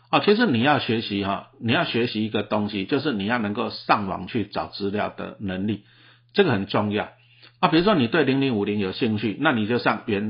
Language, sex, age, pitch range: Chinese, male, 50-69, 105-140 Hz